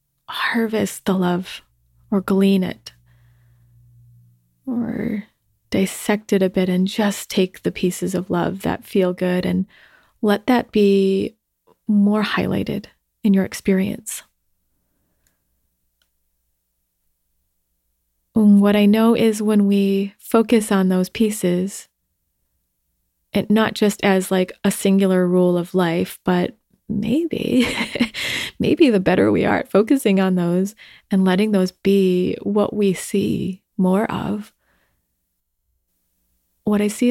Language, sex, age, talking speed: English, female, 20-39, 120 wpm